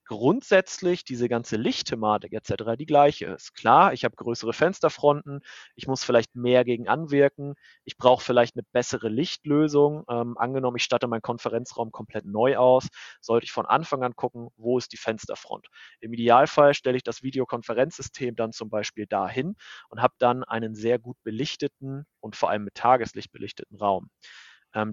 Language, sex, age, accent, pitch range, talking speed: German, male, 30-49, German, 115-140 Hz, 165 wpm